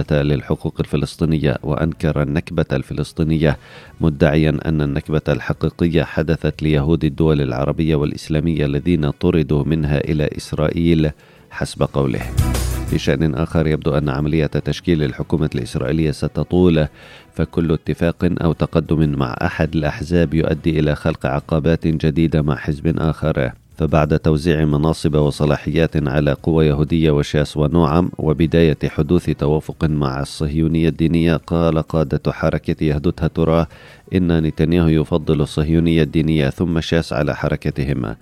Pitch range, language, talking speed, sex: 75-80 Hz, Arabic, 120 wpm, male